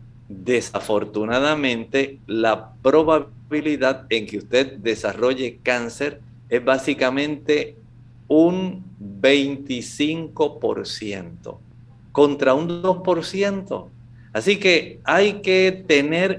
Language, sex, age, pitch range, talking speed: Spanish, male, 50-69, 120-150 Hz, 75 wpm